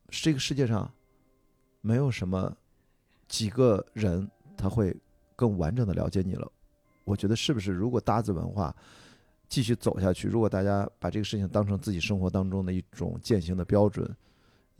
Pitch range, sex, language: 100-130 Hz, male, Chinese